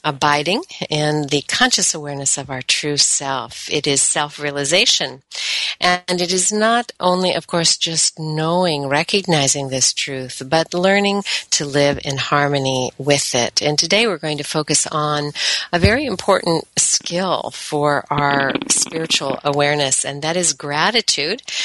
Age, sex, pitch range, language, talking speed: 50-69, female, 145-175 Hz, English, 140 wpm